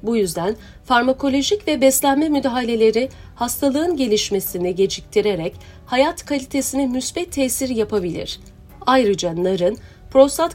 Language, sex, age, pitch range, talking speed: Turkish, female, 40-59, 210-280 Hz, 95 wpm